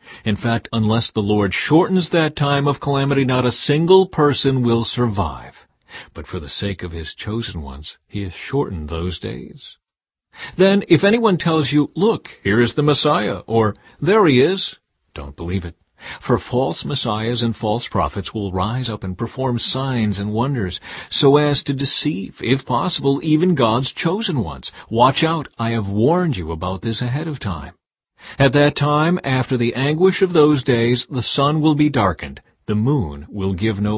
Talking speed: 175 wpm